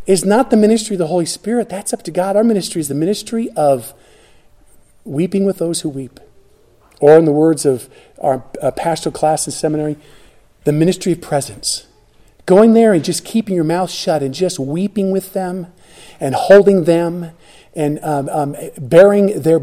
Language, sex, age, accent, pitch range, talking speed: English, male, 50-69, American, 150-210 Hz, 180 wpm